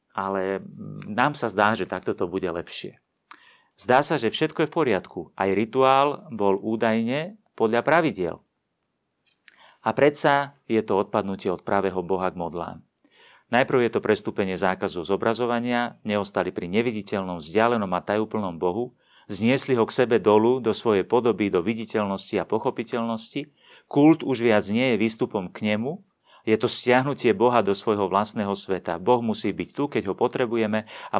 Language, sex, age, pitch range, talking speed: Slovak, male, 40-59, 100-125 Hz, 155 wpm